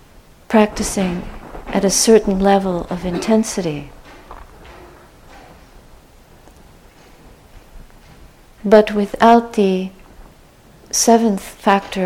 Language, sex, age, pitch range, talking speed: English, female, 50-69, 185-225 Hz, 60 wpm